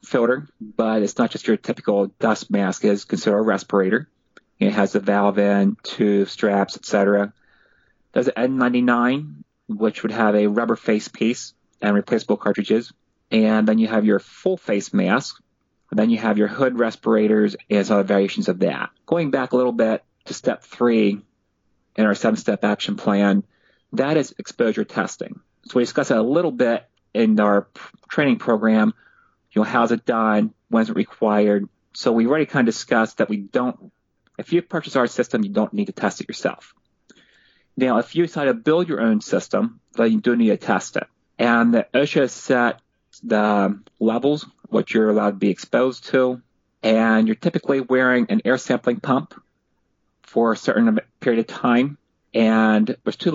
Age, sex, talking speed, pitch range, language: 30-49, male, 180 wpm, 105-125 Hz, English